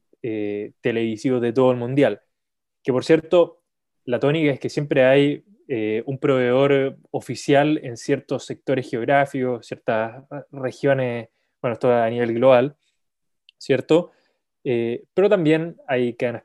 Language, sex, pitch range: Spanish, male, 120-145 Hz